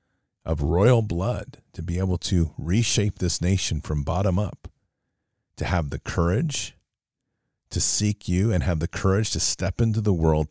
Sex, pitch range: male, 85-105 Hz